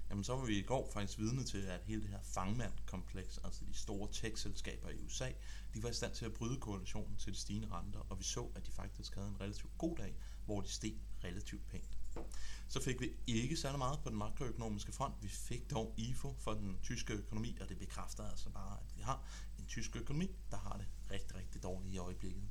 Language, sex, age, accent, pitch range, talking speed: Danish, male, 30-49, native, 95-110 Hz, 225 wpm